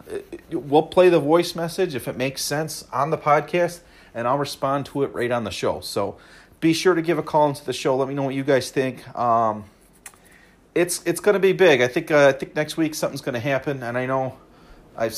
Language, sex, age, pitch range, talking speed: English, male, 40-59, 120-170 Hz, 235 wpm